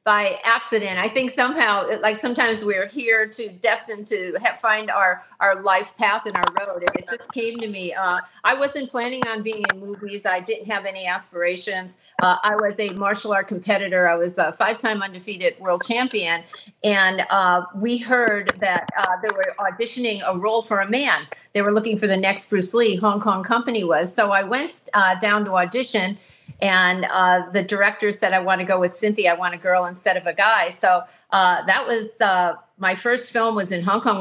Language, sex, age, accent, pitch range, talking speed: English, female, 50-69, American, 185-225 Hz, 205 wpm